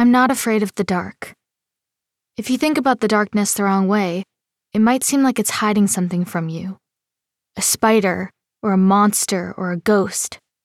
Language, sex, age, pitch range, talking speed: English, female, 20-39, 190-235 Hz, 180 wpm